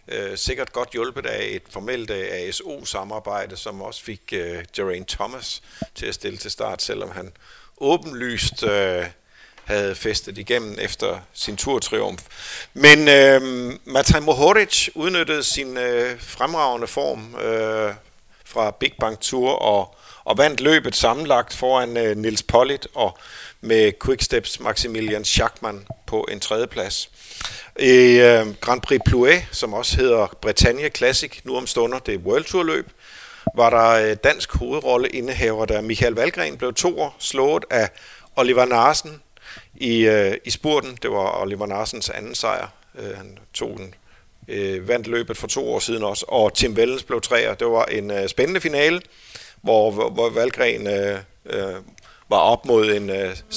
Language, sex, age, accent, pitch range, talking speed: Danish, male, 50-69, native, 105-125 Hz, 150 wpm